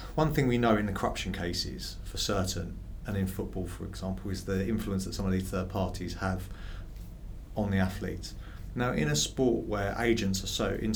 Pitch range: 95-110 Hz